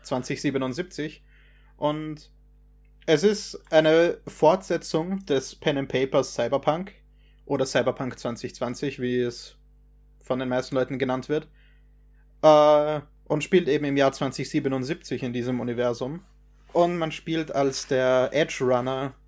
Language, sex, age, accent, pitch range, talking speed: German, male, 20-39, German, 130-155 Hz, 115 wpm